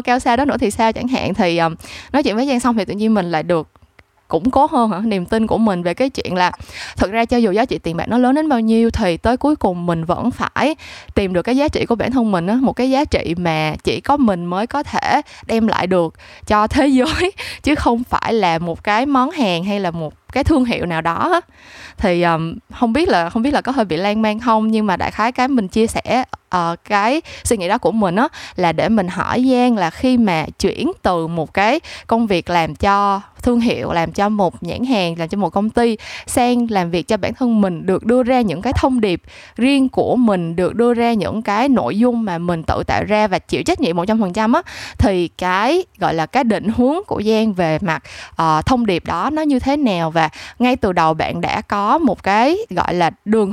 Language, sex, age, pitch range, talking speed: Vietnamese, female, 20-39, 180-250 Hz, 250 wpm